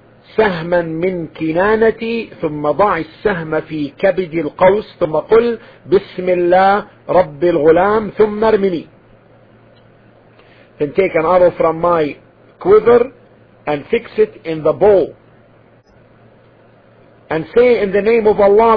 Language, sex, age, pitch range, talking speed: English, male, 50-69, 150-185 Hz, 120 wpm